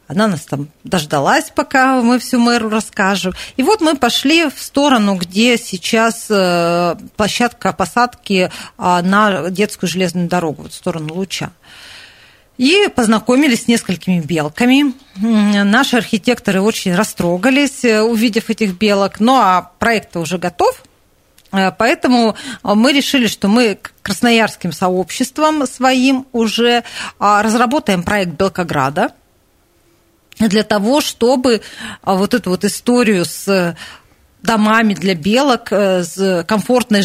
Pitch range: 185-245 Hz